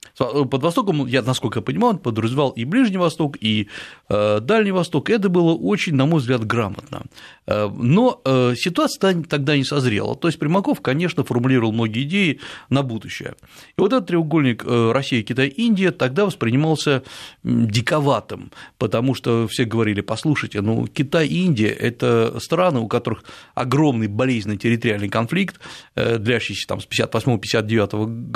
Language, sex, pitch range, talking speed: Russian, male, 115-150 Hz, 135 wpm